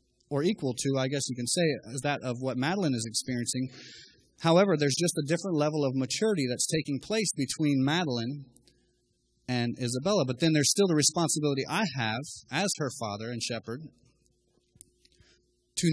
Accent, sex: American, male